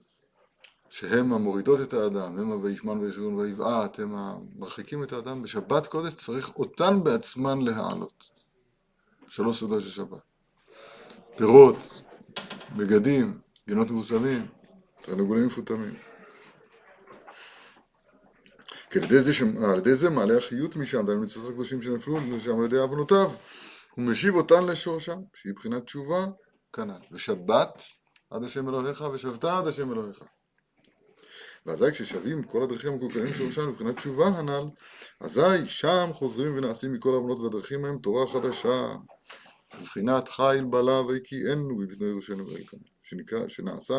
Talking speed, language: 120 wpm, Hebrew